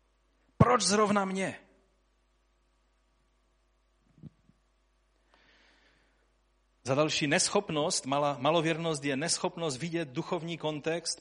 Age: 30-49